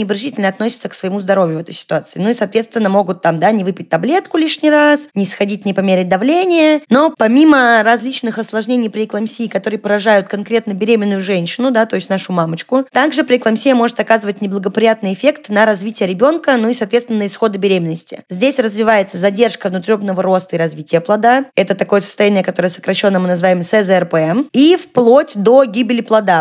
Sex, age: female, 20-39